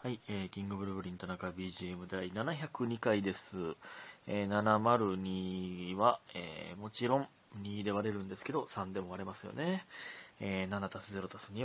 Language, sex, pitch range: Japanese, male, 95-120 Hz